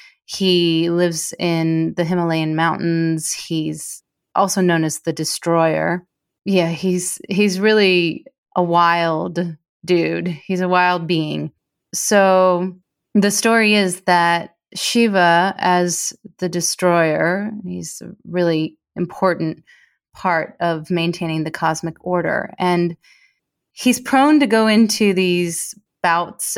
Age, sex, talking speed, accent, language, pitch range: 30-49, female, 115 wpm, American, English, 165-195 Hz